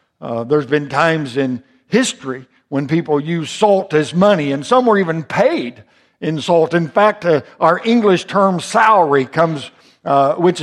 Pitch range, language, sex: 150-195 Hz, English, male